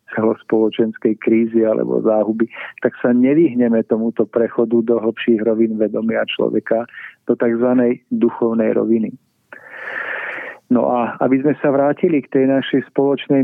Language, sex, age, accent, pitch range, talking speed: Czech, male, 40-59, native, 120-135 Hz, 125 wpm